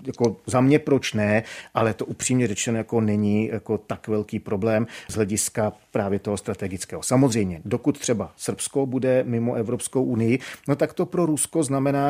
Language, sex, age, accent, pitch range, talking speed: Czech, male, 40-59, native, 105-130 Hz, 170 wpm